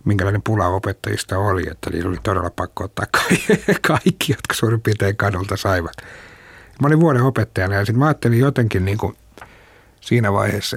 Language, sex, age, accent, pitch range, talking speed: Finnish, male, 60-79, native, 95-115 Hz, 155 wpm